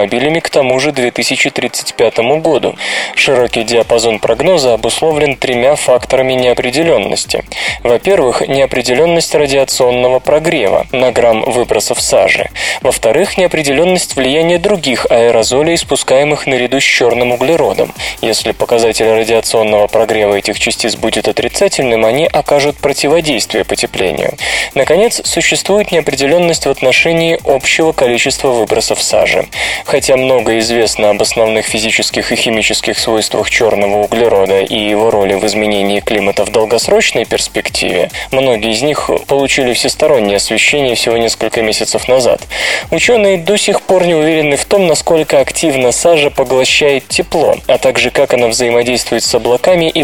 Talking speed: 120 wpm